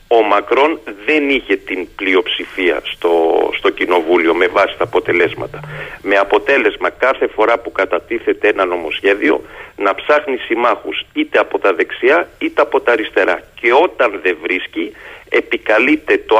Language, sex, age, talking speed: Greek, male, 40-59, 140 wpm